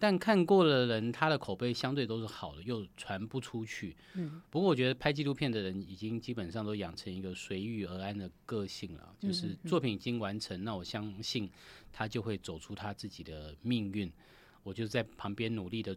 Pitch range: 95-120 Hz